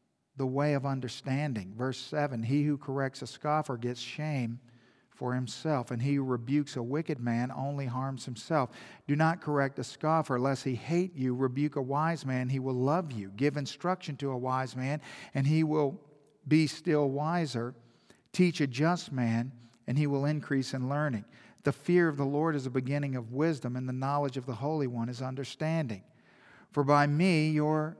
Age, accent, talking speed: 50-69, American, 185 wpm